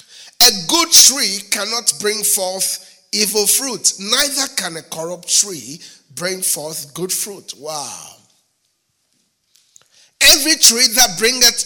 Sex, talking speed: male, 115 wpm